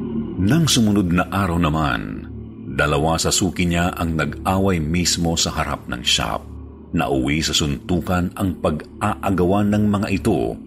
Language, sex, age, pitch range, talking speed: Filipino, male, 40-59, 75-95 Hz, 140 wpm